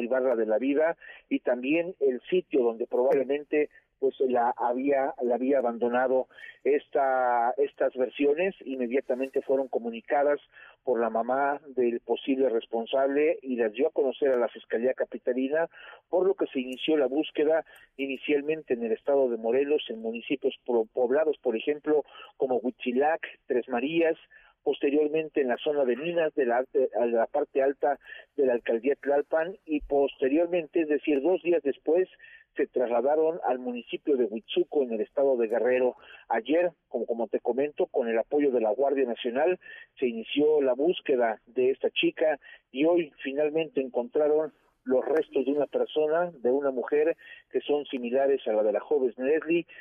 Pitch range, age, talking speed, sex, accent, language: 130-185 Hz, 40-59, 165 wpm, male, Mexican, Spanish